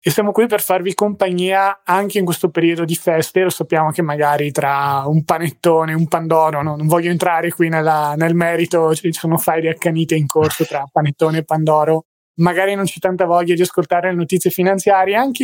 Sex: male